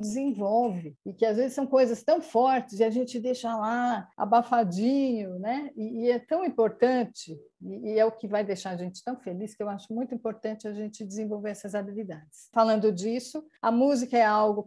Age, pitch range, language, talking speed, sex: 50-69, 195-245 Hz, Portuguese, 195 wpm, female